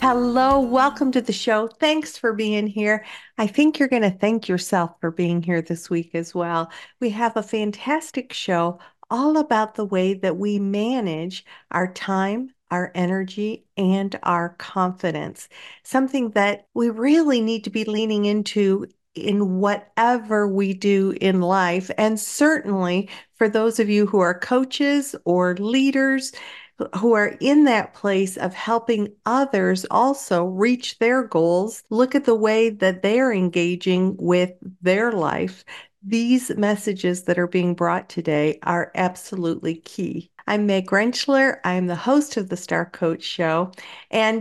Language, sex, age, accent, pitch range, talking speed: English, female, 50-69, American, 190-255 Hz, 150 wpm